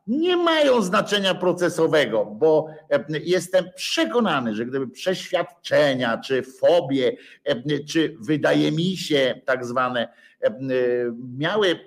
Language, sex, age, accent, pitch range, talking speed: Polish, male, 50-69, native, 125-180 Hz, 95 wpm